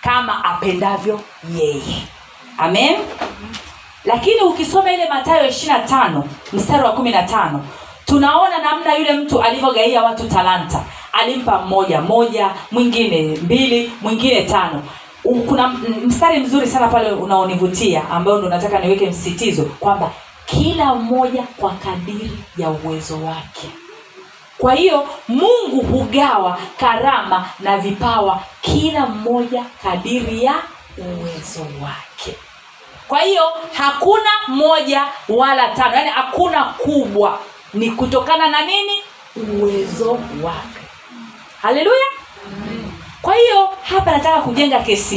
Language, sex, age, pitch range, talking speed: Swahili, female, 40-59, 195-290 Hz, 105 wpm